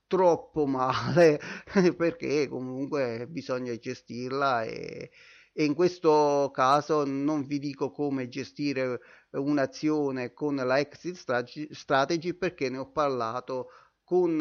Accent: native